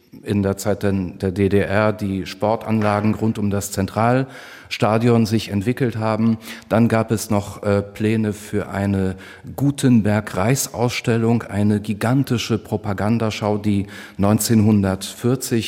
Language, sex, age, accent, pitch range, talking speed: German, male, 40-59, German, 100-115 Hz, 105 wpm